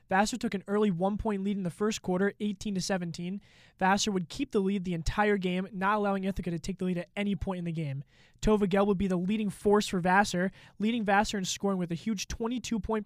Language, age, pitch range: English, 20-39, 175-205 Hz